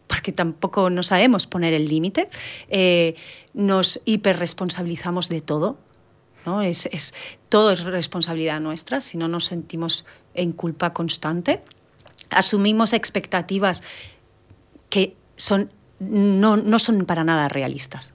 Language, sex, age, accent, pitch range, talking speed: Spanish, female, 40-59, Spanish, 160-195 Hz, 120 wpm